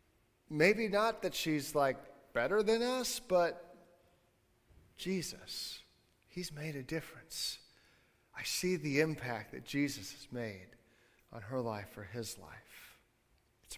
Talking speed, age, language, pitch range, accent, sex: 125 wpm, 40-59, English, 135-170 Hz, American, male